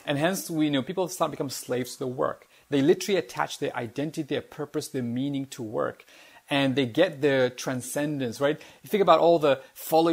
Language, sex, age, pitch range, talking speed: English, male, 30-49, 125-155 Hz, 205 wpm